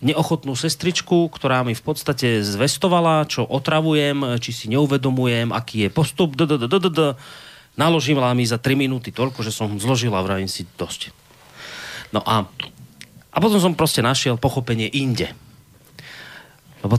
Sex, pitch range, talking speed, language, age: male, 115-160 Hz, 135 wpm, Slovak, 30-49